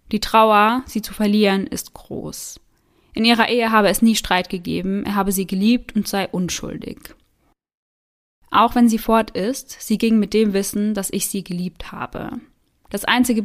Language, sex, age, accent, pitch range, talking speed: German, female, 20-39, German, 190-225 Hz, 175 wpm